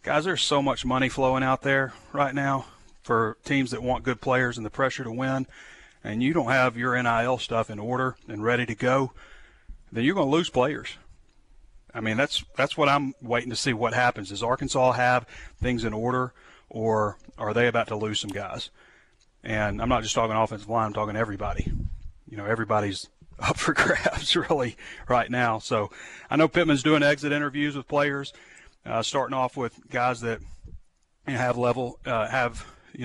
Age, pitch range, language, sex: 40-59, 110-130 Hz, English, male